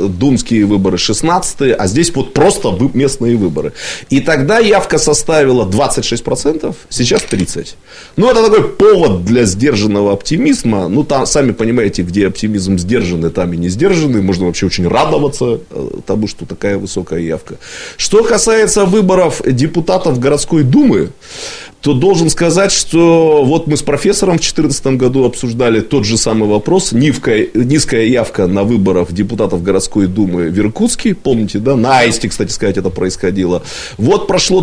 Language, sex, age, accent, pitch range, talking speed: Russian, male, 30-49, native, 105-165 Hz, 145 wpm